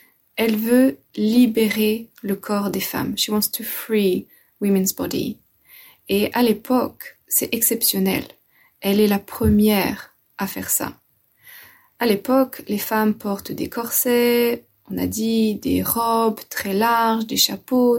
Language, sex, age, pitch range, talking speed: French, female, 20-39, 205-240 Hz, 145 wpm